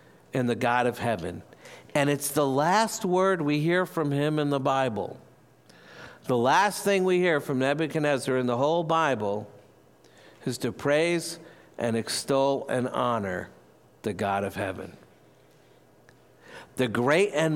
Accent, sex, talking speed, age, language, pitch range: American, male, 145 wpm, 60-79, English, 120-160 Hz